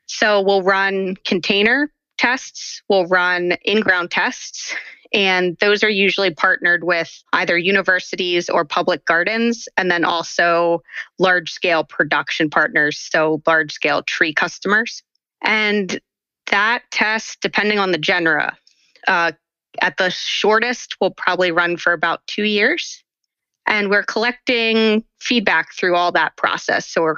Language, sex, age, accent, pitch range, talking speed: English, female, 20-39, American, 175-205 Hz, 130 wpm